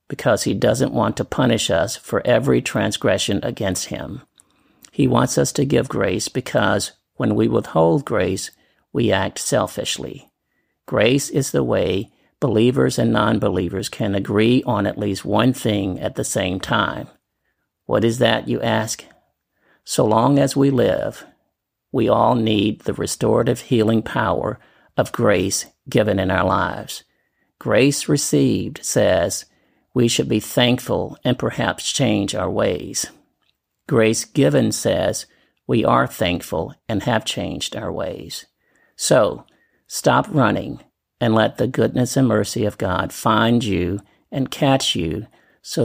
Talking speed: 140 wpm